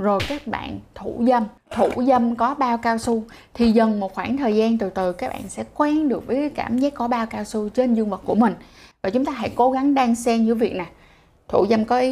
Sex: female